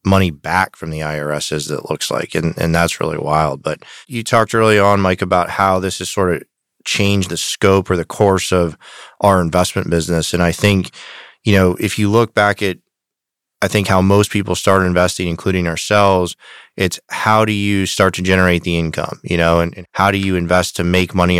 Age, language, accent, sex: 20-39, English, American, male